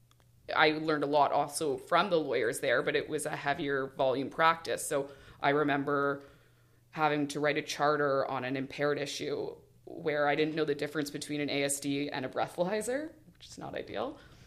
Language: English